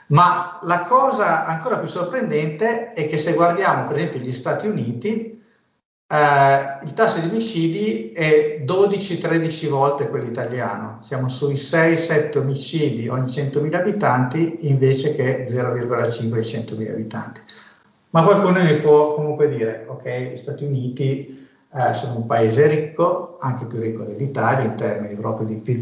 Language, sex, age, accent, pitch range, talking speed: Italian, male, 50-69, native, 125-170 Hz, 140 wpm